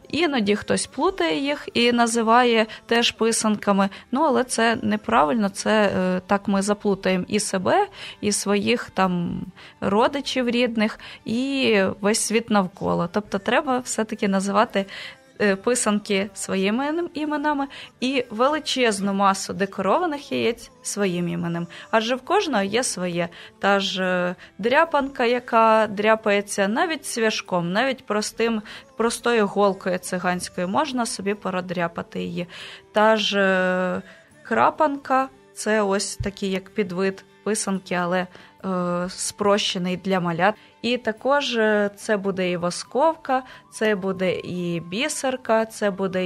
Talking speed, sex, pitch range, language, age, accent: 115 wpm, female, 190-240 Hz, Ukrainian, 20-39, native